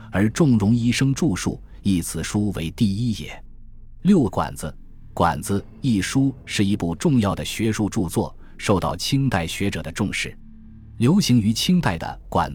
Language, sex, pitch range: Chinese, male, 85-115 Hz